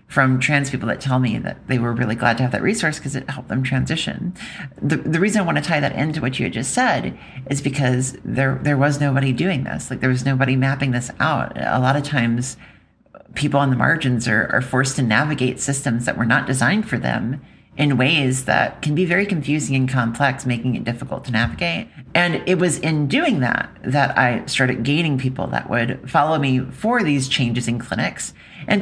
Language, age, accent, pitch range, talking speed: English, 40-59, American, 125-150 Hz, 215 wpm